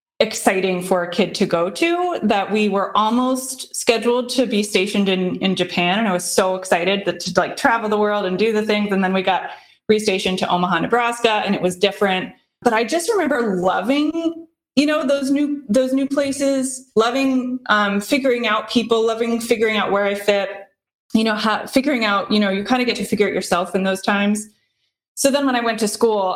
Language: English